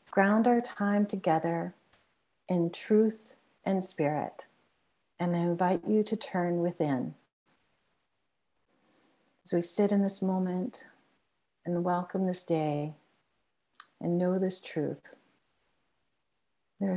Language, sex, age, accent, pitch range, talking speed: English, female, 50-69, American, 175-205 Hz, 105 wpm